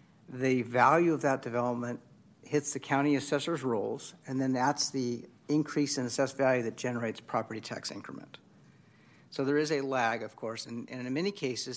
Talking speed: 175 wpm